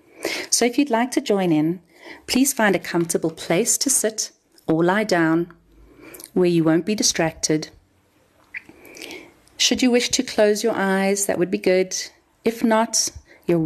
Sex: female